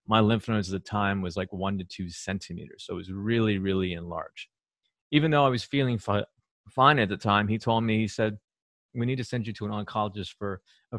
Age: 30-49